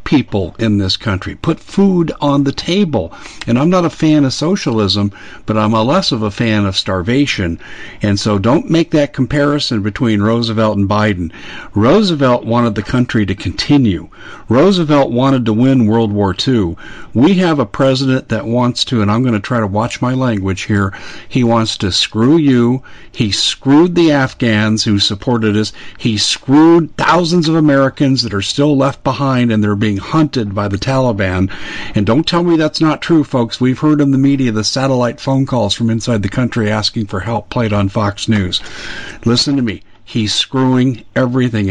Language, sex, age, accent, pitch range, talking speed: English, male, 50-69, American, 105-130 Hz, 185 wpm